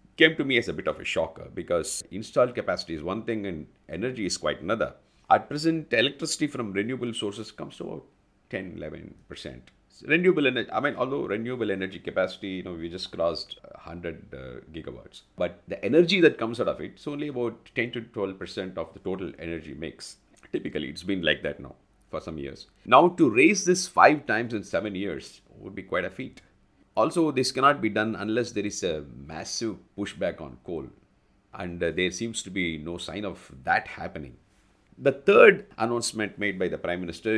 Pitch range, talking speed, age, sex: 90-125 Hz, 195 wpm, 50-69, male